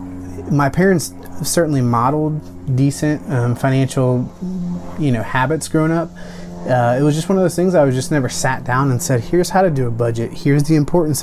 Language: English